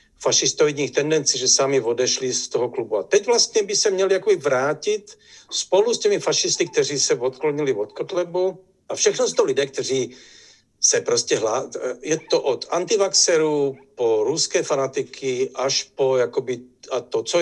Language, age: Czech, 60-79